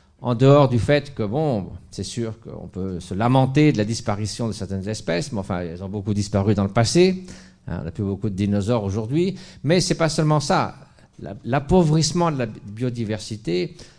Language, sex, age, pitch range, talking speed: French, male, 50-69, 100-130 Hz, 190 wpm